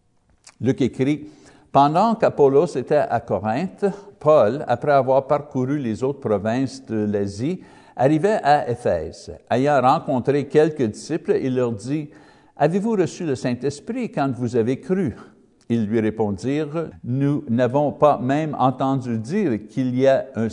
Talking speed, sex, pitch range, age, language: 150 wpm, male, 115-155 Hz, 60-79, French